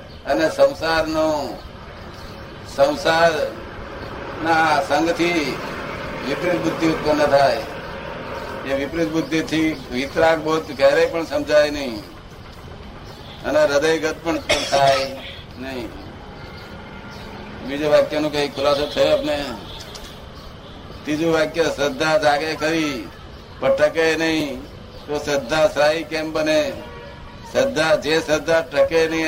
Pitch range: 140-160 Hz